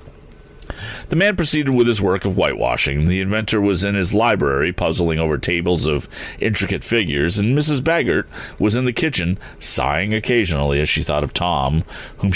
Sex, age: male, 40-59